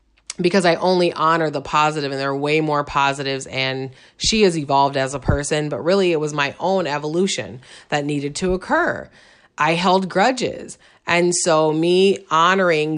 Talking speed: 170 wpm